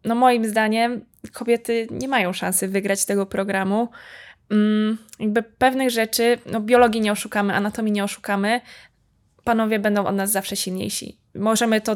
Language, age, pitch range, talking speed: Polish, 20-39, 195-220 Hz, 140 wpm